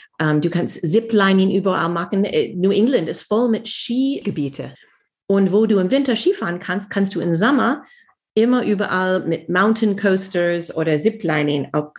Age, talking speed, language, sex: 40-59, 155 wpm, German, female